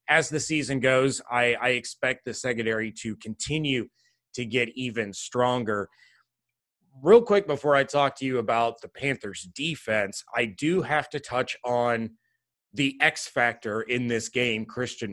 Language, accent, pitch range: English, American, 115-140 Hz